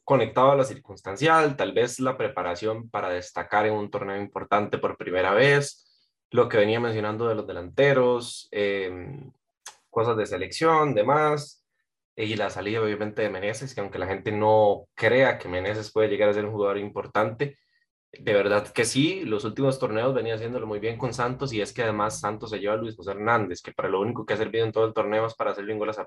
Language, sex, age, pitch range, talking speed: Spanish, male, 20-39, 105-145 Hz, 210 wpm